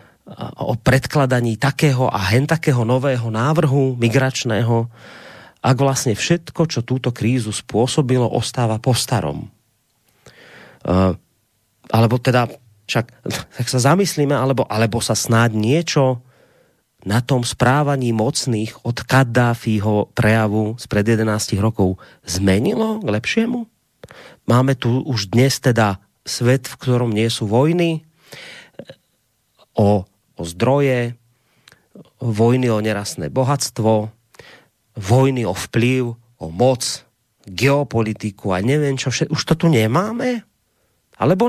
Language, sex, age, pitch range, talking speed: Slovak, male, 30-49, 115-145 Hz, 110 wpm